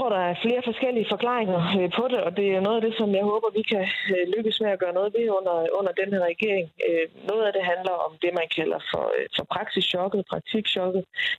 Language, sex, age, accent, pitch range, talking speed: Danish, female, 20-39, native, 175-205 Hz, 210 wpm